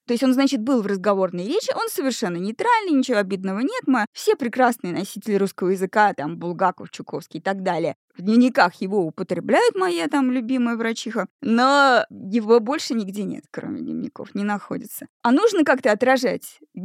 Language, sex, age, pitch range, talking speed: Russian, female, 20-39, 200-275 Hz, 165 wpm